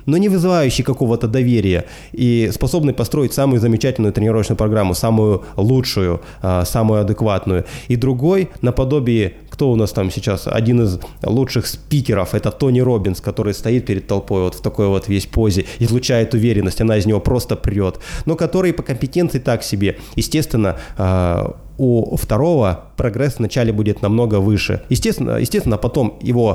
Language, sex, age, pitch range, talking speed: Russian, male, 20-39, 100-125 Hz, 150 wpm